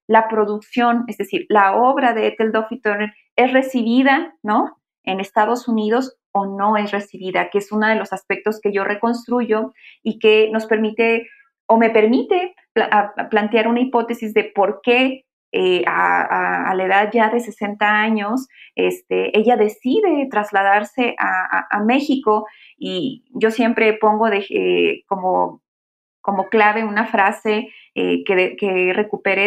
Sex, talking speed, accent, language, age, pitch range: female, 155 wpm, Mexican, Spanish, 30-49, 205-245 Hz